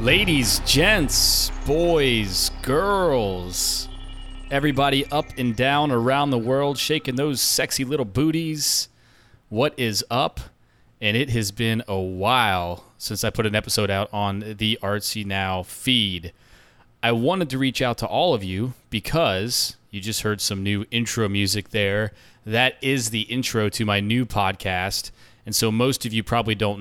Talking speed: 155 wpm